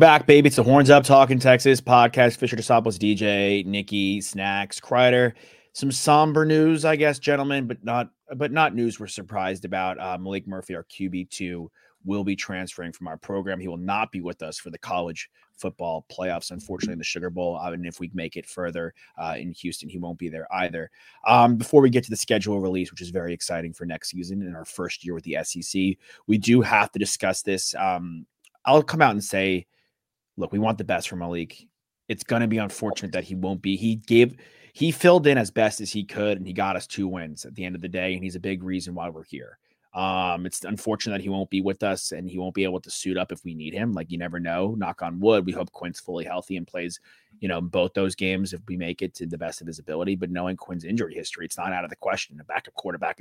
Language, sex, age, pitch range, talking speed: English, male, 30-49, 90-110 Hz, 240 wpm